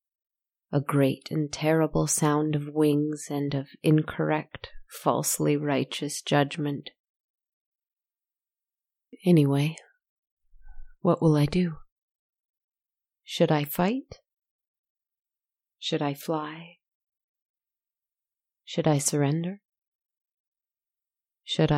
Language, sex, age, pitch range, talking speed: English, female, 30-49, 145-165 Hz, 75 wpm